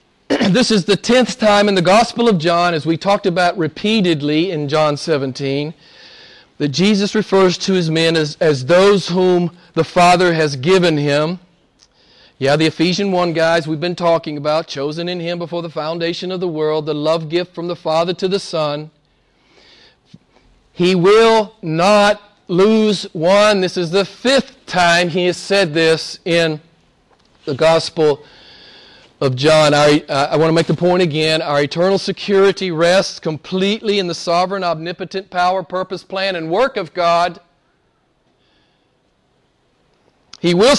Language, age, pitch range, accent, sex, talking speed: English, 40-59, 165-205 Hz, American, male, 155 wpm